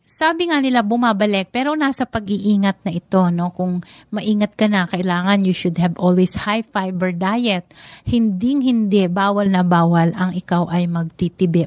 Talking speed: 160 wpm